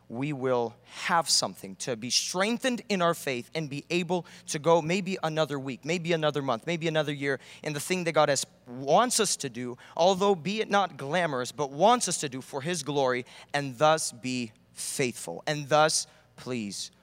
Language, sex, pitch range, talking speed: English, male, 135-190 Hz, 190 wpm